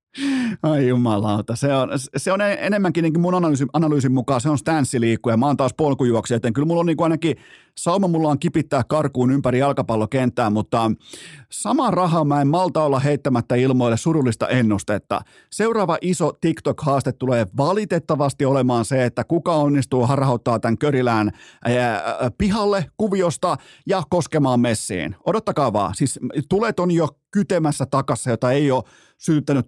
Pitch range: 120-155 Hz